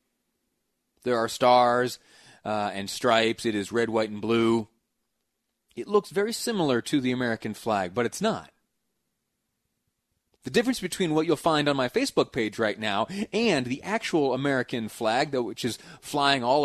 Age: 30-49